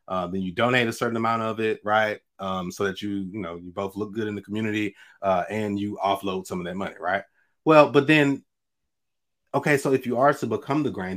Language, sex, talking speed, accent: English, male, 235 wpm, American